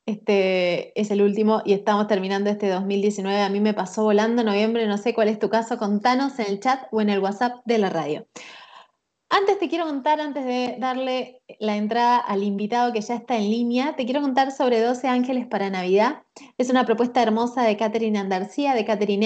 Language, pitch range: Spanish, 225-290 Hz